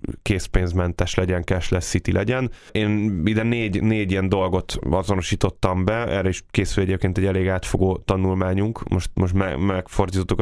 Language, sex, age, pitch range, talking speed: Hungarian, male, 10-29, 90-105 Hz, 145 wpm